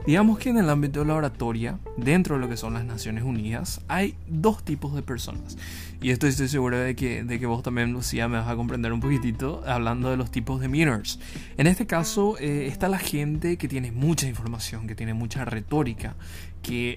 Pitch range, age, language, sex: 110-140 Hz, 20-39, Spanish, male